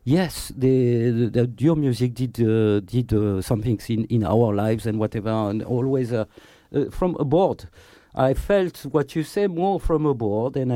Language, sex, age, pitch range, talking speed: English, male, 50-69, 110-145 Hz, 180 wpm